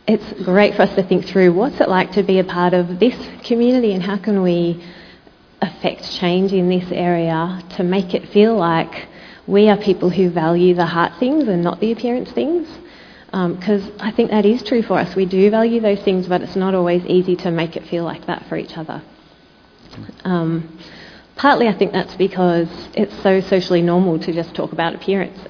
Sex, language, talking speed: female, English, 205 wpm